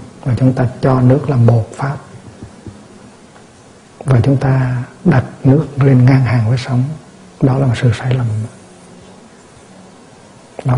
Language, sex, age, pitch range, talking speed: Vietnamese, male, 60-79, 120-140 Hz, 140 wpm